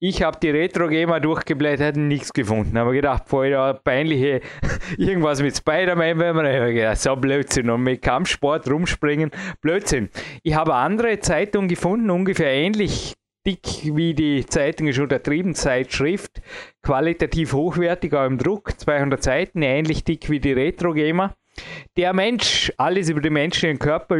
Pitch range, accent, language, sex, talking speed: 140-175 Hz, Austrian, German, male, 145 wpm